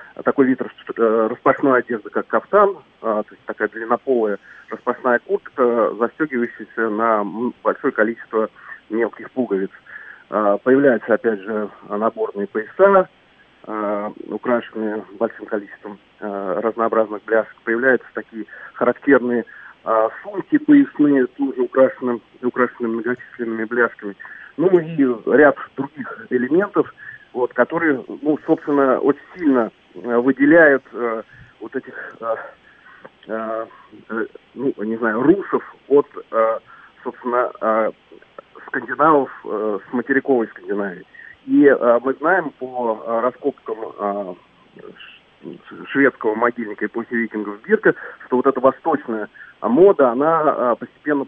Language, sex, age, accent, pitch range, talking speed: Russian, male, 30-49, native, 110-135 Hz, 110 wpm